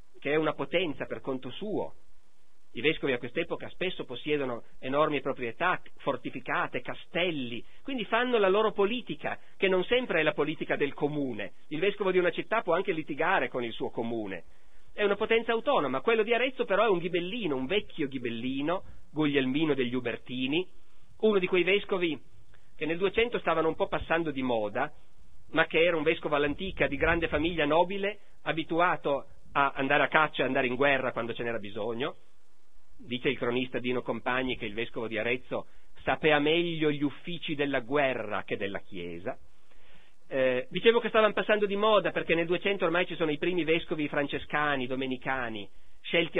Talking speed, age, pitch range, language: 175 wpm, 40-59, 130-195 Hz, Italian